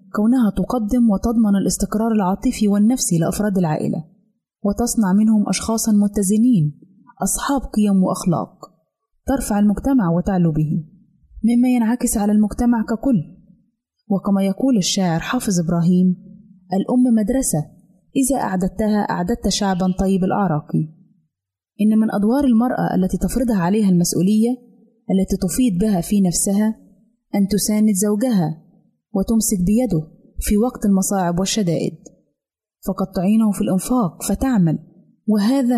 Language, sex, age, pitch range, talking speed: Arabic, female, 20-39, 185-225 Hz, 110 wpm